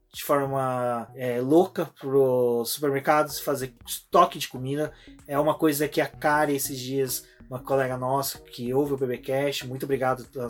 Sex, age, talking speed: male, 20-39, 170 wpm